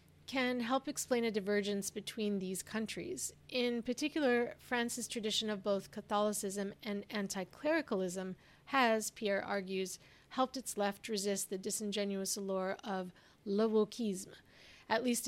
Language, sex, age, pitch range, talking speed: English, female, 30-49, 200-235 Hz, 125 wpm